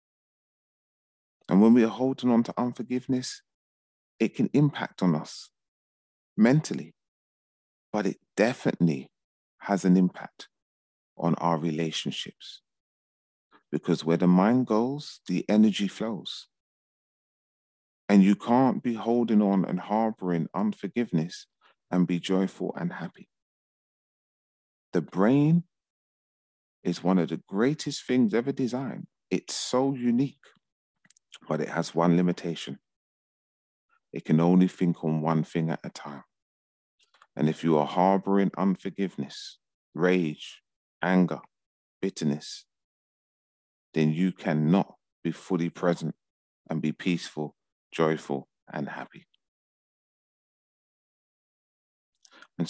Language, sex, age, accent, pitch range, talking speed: English, male, 40-59, British, 80-110 Hz, 110 wpm